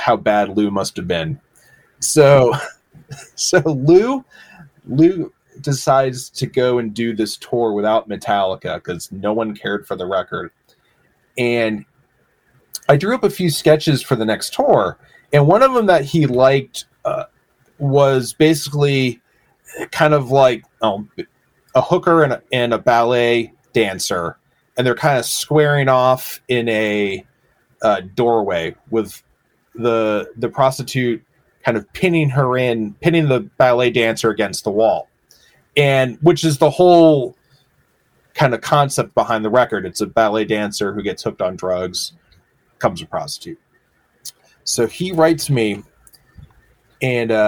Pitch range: 115-150 Hz